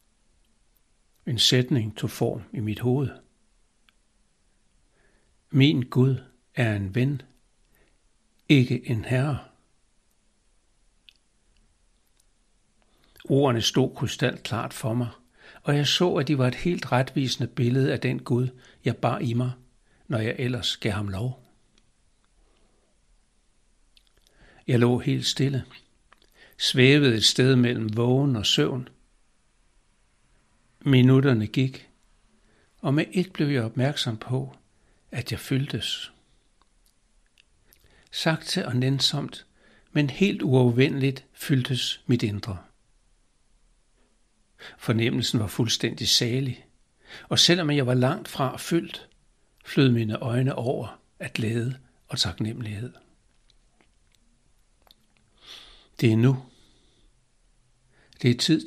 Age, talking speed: 60-79, 105 wpm